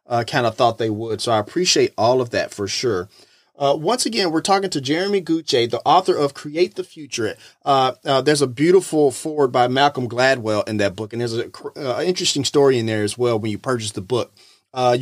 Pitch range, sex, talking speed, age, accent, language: 115-155 Hz, male, 220 wpm, 30-49, American, English